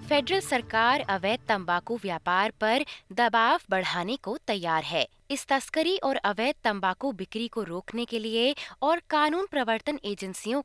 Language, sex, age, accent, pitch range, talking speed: Hindi, female, 20-39, native, 205-310 Hz, 140 wpm